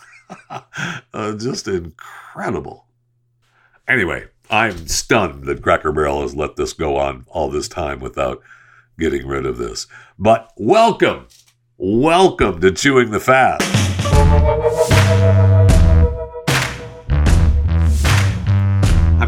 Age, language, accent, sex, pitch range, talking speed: 60-79, English, American, male, 95-125 Hz, 95 wpm